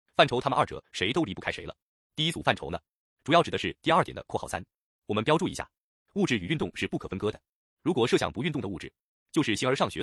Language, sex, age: Chinese, male, 30-49